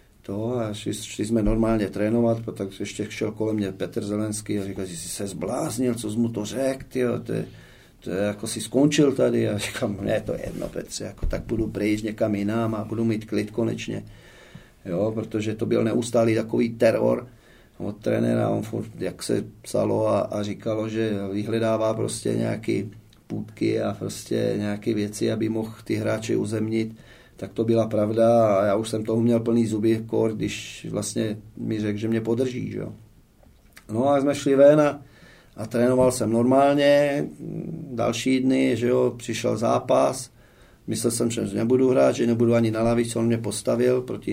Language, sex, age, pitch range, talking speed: Czech, male, 40-59, 105-120 Hz, 170 wpm